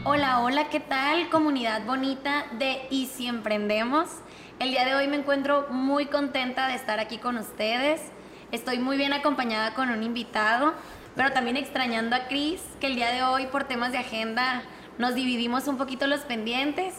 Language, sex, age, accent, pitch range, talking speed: Spanish, female, 20-39, Mexican, 240-290 Hz, 175 wpm